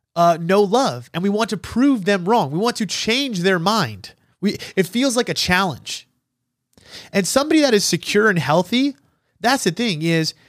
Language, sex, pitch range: English, male, 155-235 Hz